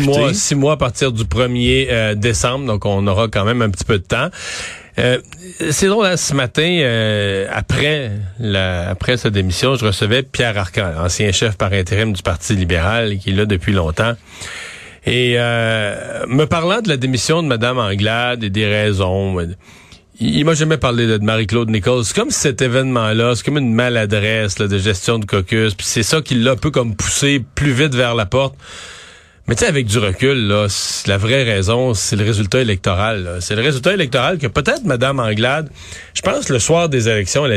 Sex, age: male, 40-59